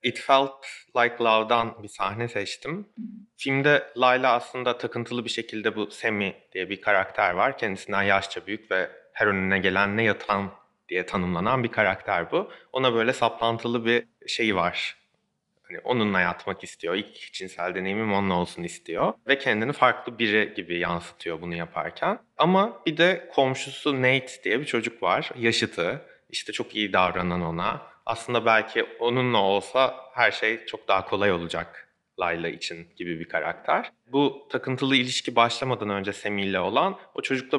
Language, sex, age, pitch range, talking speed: Turkish, male, 30-49, 100-130 Hz, 155 wpm